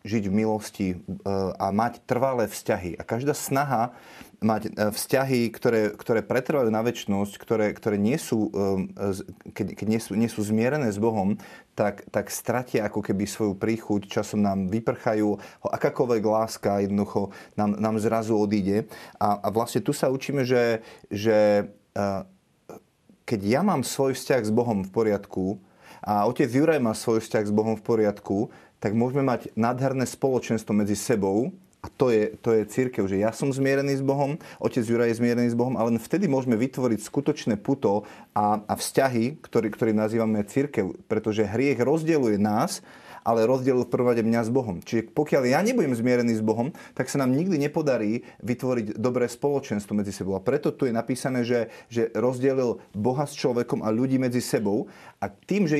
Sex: male